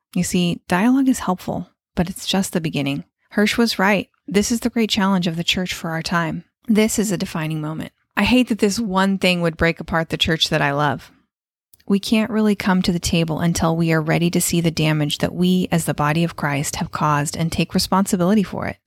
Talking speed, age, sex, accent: 230 wpm, 30-49, female, American